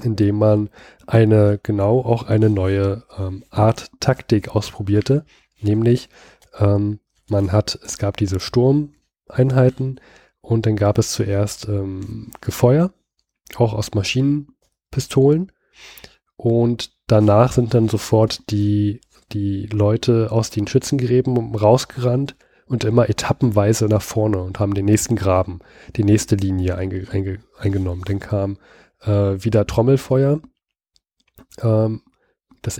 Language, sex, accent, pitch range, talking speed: German, male, German, 105-120 Hz, 115 wpm